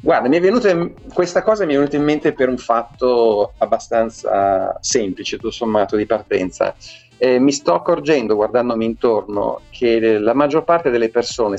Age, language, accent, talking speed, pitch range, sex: 40-59, Italian, native, 165 wpm, 105-135 Hz, male